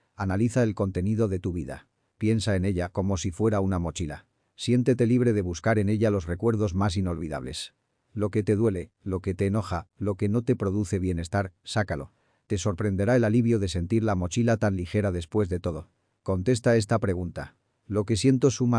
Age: 40-59